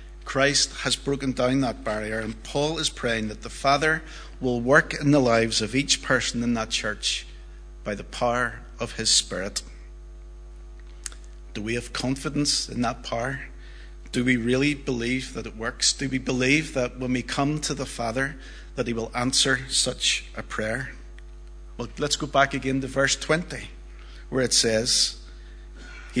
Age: 50-69